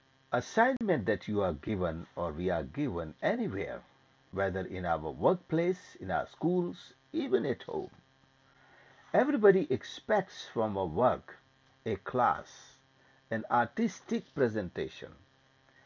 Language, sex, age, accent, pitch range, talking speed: English, male, 60-79, Indian, 110-180 Hz, 115 wpm